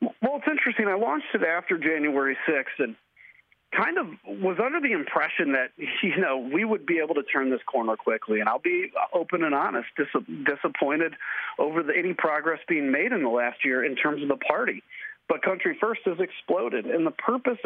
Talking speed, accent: 195 wpm, American